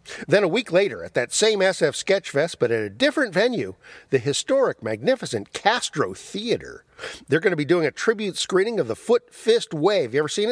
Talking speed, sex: 210 wpm, male